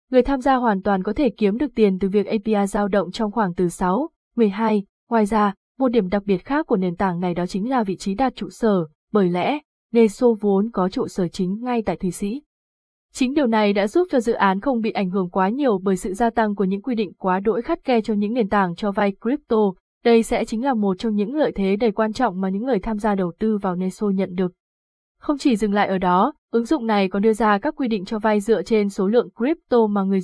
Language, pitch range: Vietnamese, 195-240 Hz